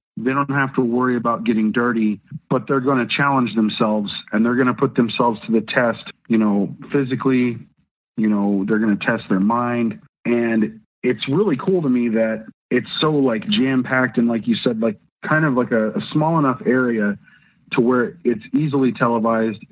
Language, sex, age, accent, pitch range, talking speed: English, male, 40-59, American, 110-130 Hz, 190 wpm